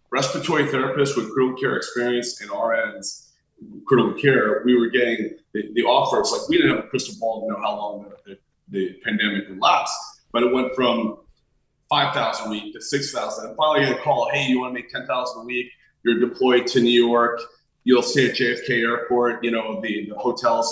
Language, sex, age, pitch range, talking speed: English, male, 30-49, 115-140 Hz, 205 wpm